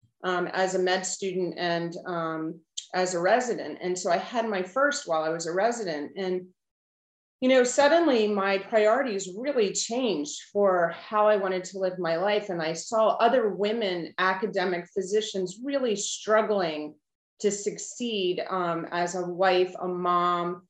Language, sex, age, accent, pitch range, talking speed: English, female, 30-49, American, 180-225 Hz, 155 wpm